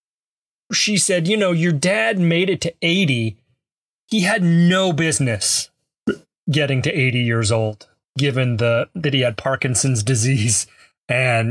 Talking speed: 140 wpm